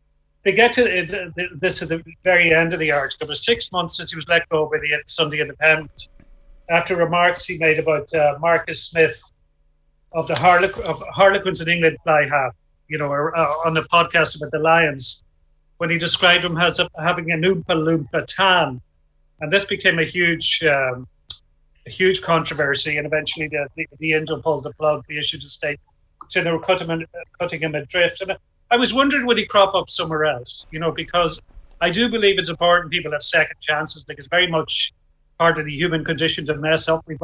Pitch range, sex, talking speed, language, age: 150-175 Hz, male, 205 wpm, English, 40-59